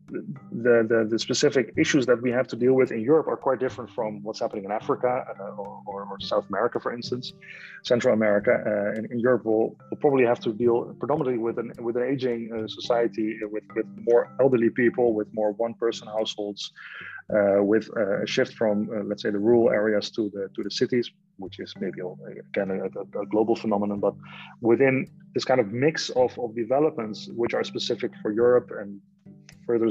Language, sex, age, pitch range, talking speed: Greek, male, 30-49, 105-125 Hz, 195 wpm